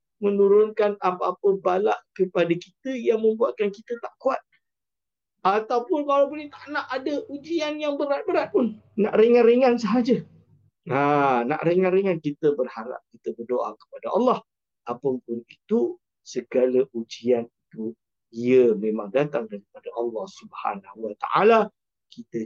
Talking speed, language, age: 120 wpm, English, 50-69